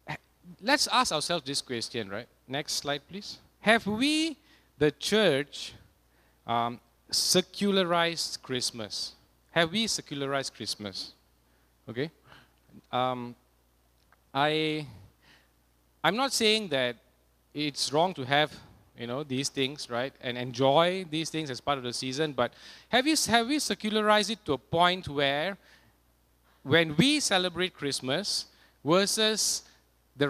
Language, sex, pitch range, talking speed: English, male, 120-190 Hz, 125 wpm